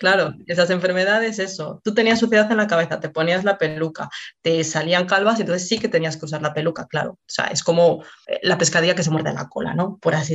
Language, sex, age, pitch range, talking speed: Spanish, female, 20-39, 165-215 Hz, 240 wpm